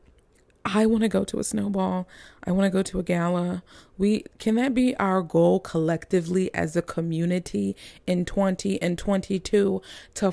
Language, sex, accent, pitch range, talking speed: English, female, American, 155-195 Hz, 155 wpm